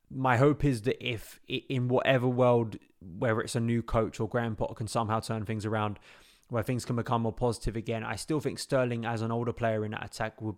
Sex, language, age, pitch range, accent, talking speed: male, English, 20-39, 110-120 Hz, British, 220 wpm